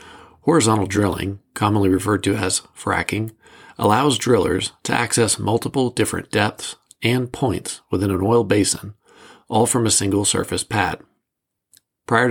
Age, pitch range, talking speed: 40-59, 100-115 Hz, 130 wpm